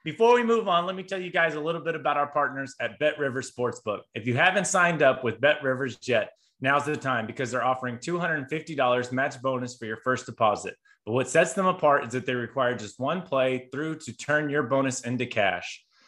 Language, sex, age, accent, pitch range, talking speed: English, male, 30-49, American, 130-160 Hz, 215 wpm